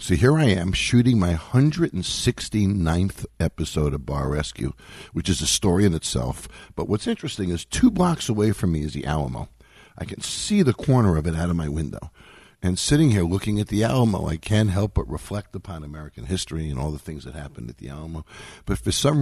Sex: male